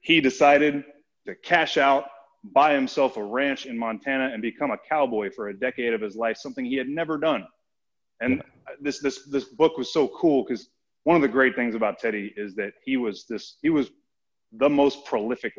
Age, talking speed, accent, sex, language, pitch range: 30-49, 200 wpm, American, male, English, 110-140 Hz